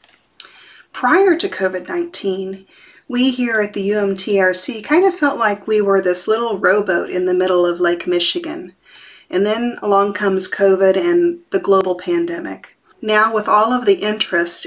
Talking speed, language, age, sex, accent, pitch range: 155 wpm, English, 40-59, female, American, 185-240 Hz